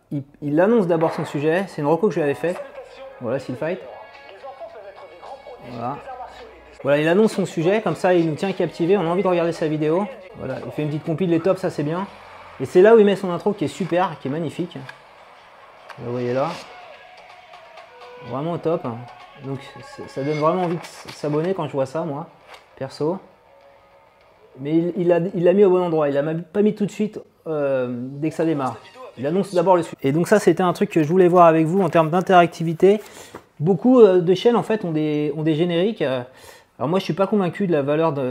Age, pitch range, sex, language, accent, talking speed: 30-49, 145-185 Hz, male, French, French, 225 wpm